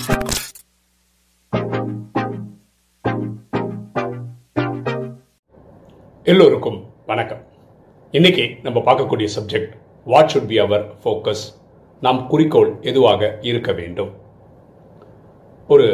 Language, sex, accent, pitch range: Tamil, male, native, 105-140 Hz